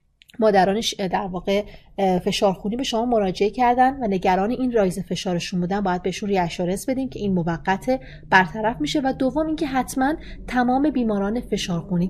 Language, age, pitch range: Persian, 30-49, 185-245 Hz